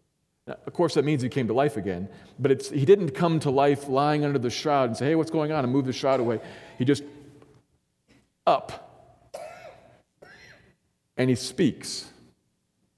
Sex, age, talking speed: male, 40-59, 165 wpm